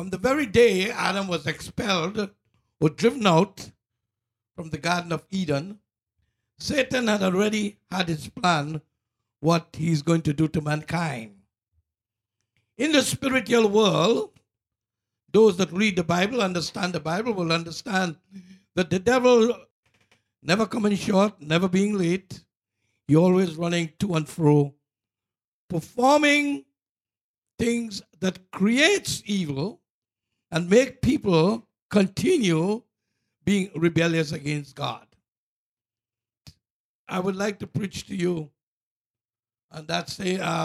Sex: male